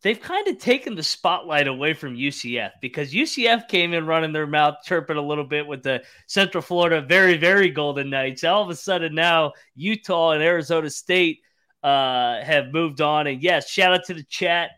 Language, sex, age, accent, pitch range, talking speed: English, male, 30-49, American, 140-175 Hz, 195 wpm